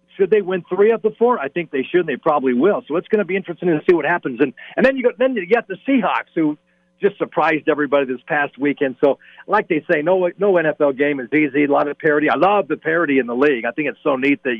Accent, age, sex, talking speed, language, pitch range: American, 50-69, male, 280 wpm, English, 140-185 Hz